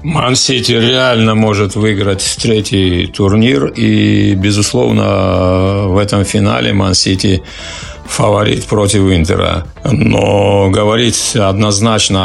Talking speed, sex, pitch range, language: 90 wpm, male, 95-110 Hz, Russian